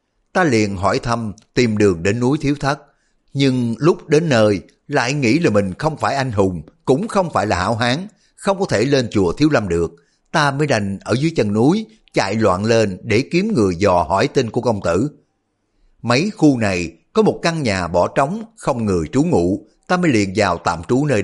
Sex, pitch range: male, 100-145 Hz